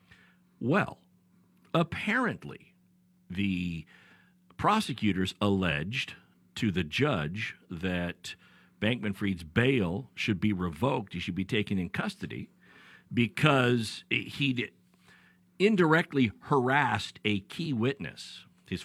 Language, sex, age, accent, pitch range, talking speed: English, male, 50-69, American, 90-125 Hz, 90 wpm